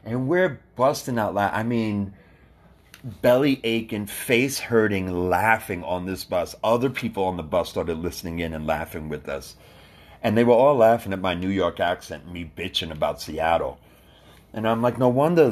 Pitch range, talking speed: 95-125 Hz, 180 wpm